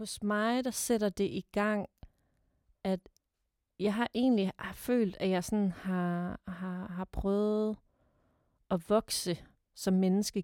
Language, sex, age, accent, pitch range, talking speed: Danish, female, 30-49, native, 170-195 Hz, 140 wpm